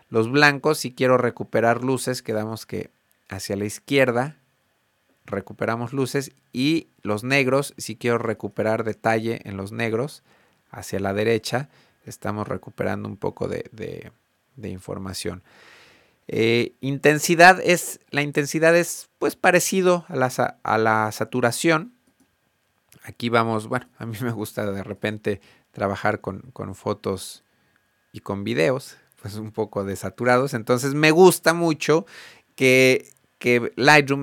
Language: Spanish